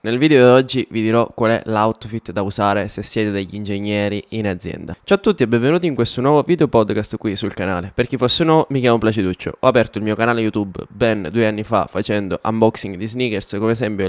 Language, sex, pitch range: Italian, male, 110-140 Hz